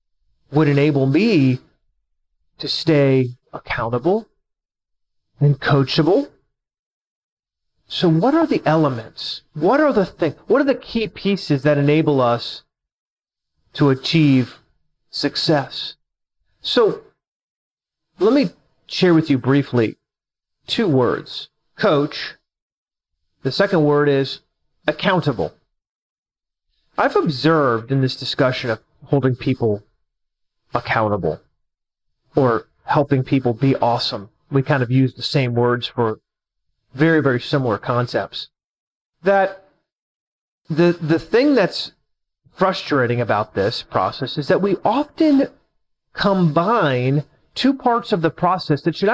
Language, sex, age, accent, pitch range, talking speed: English, male, 30-49, American, 130-185 Hz, 110 wpm